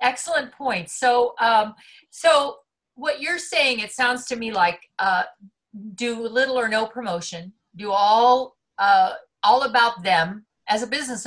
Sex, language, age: female, English, 50-69